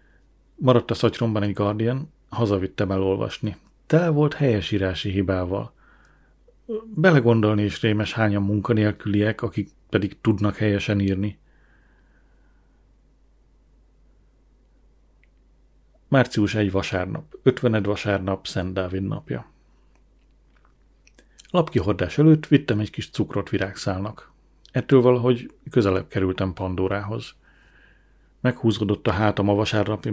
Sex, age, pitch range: male, 40-59, 100-120 Hz